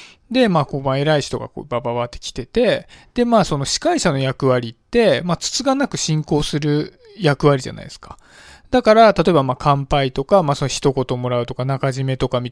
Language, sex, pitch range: Japanese, male, 130-195 Hz